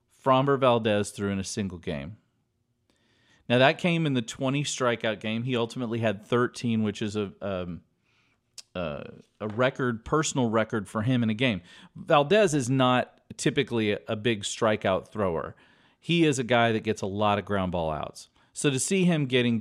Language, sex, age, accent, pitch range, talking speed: English, male, 40-59, American, 110-140 Hz, 180 wpm